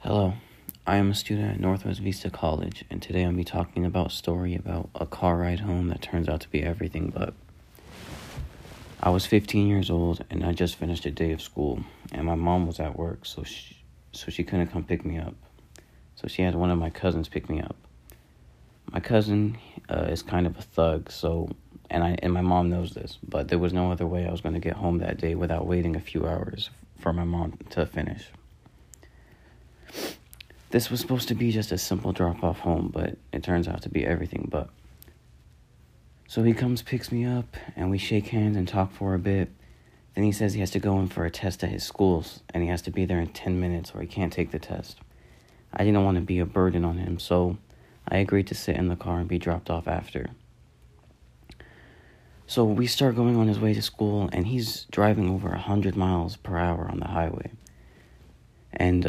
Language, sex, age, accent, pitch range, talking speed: English, male, 40-59, American, 85-100 Hz, 215 wpm